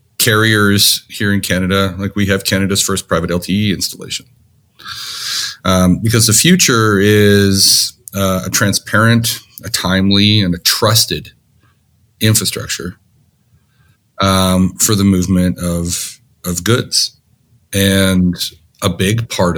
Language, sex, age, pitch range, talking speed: English, male, 40-59, 90-110 Hz, 115 wpm